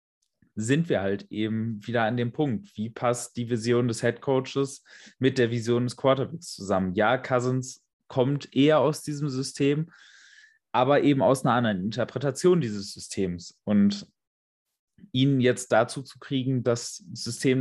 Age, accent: 30-49, German